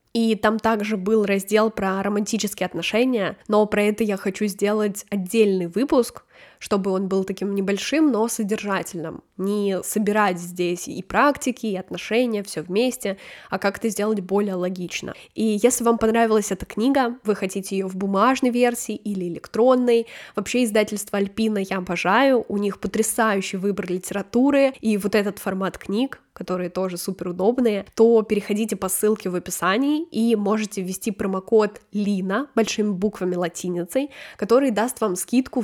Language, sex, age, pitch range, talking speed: Russian, female, 10-29, 195-230 Hz, 145 wpm